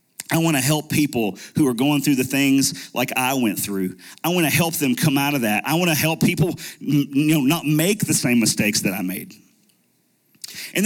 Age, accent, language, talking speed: 40-59, American, English, 220 wpm